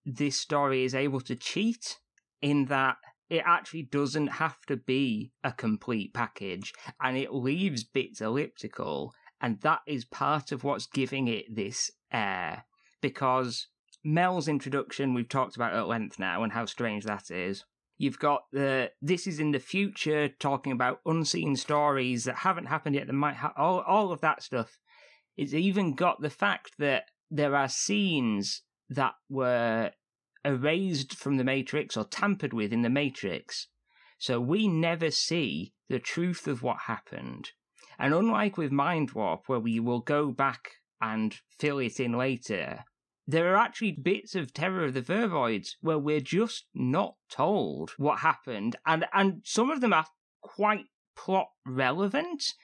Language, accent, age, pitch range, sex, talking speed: English, British, 20-39, 130-175 Hz, male, 160 wpm